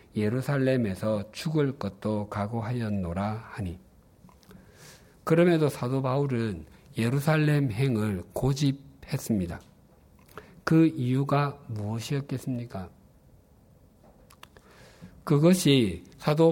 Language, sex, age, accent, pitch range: Korean, male, 50-69, native, 110-140 Hz